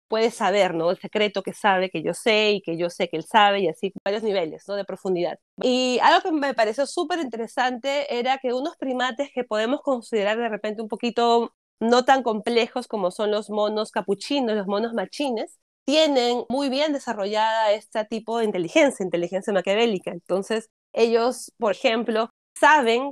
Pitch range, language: 210-255 Hz, Spanish